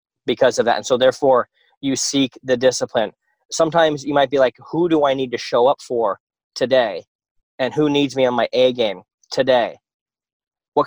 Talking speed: 190 wpm